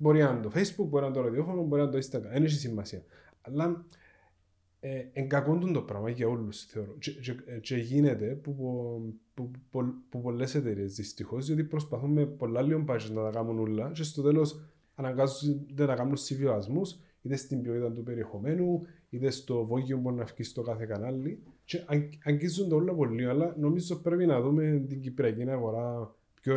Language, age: Greek, 20-39